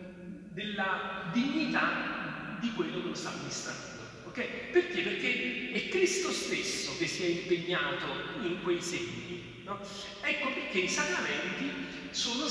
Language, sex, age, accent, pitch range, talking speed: Italian, male, 40-59, native, 185-245 Hz, 130 wpm